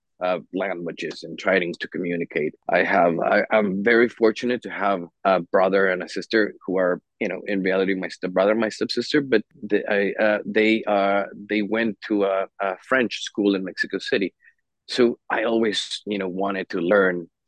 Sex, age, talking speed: male, 30-49, 185 wpm